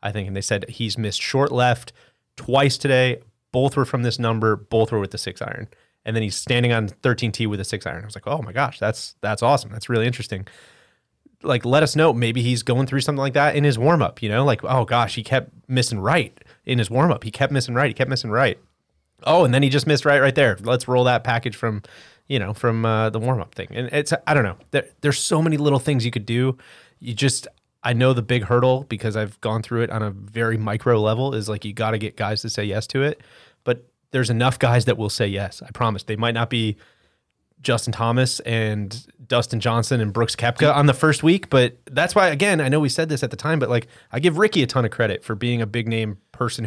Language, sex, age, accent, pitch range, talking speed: English, male, 30-49, American, 110-135 Hz, 255 wpm